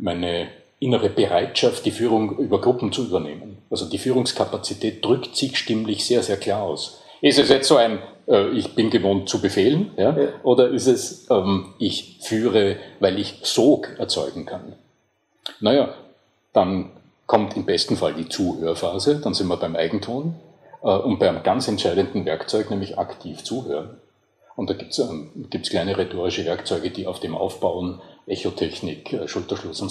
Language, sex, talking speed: German, male, 160 wpm